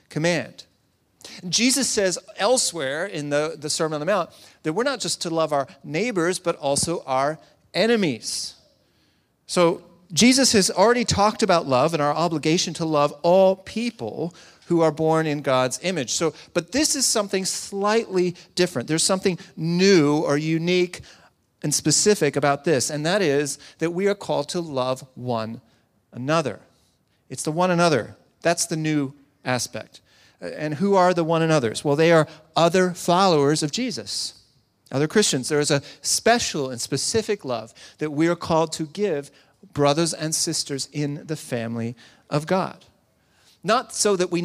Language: English